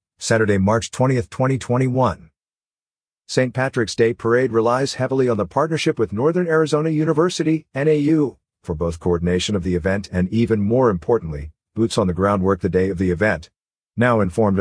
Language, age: English, 50-69